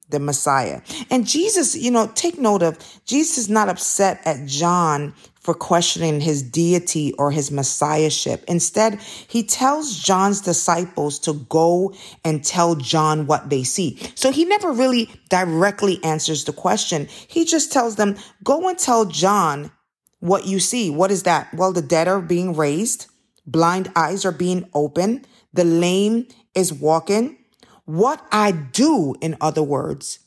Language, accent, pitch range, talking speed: English, American, 155-220 Hz, 155 wpm